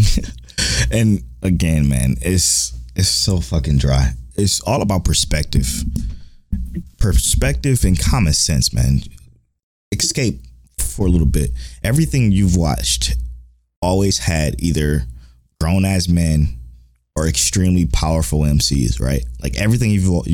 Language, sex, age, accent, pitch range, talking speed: English, male, 20-39, American, 65-95 Hz, 115 wpm